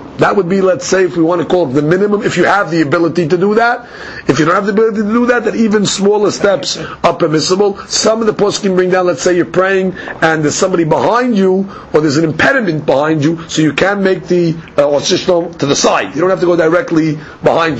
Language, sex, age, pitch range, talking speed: English, male, 40-59, 170-215 Hz, 255 wpm